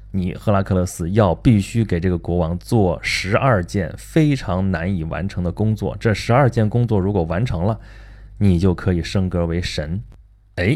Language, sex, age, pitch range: Chinese, male, 20-39, 90-110 Hz